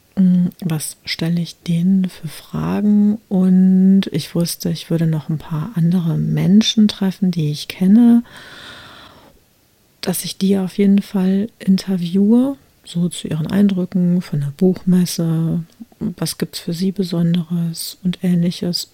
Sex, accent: female, German